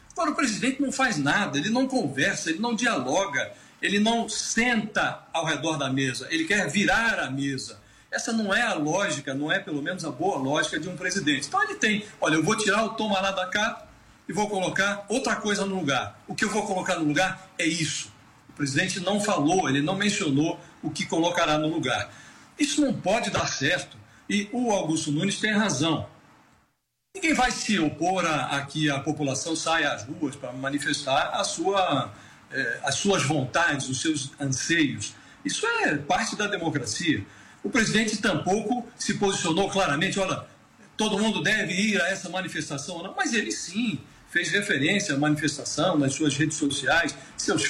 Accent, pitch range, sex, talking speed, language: Brazilian, 150-215 Hz, male, 180 wpm, Portuguese